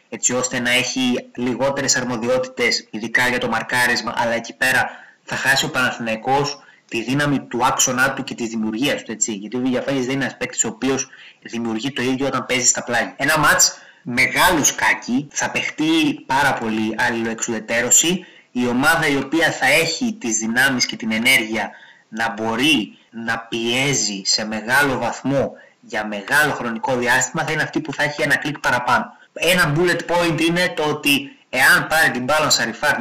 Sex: male